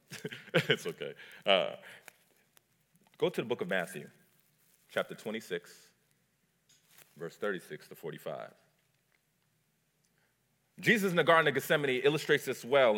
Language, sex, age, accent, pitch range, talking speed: English, male, 40-59, American, 115-185 Hz, 110 wpm